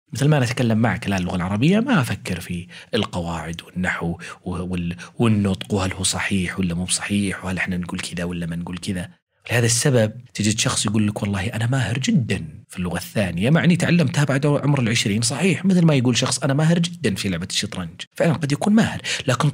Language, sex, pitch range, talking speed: Arabic, male, 100-145 Hz, 190 wpm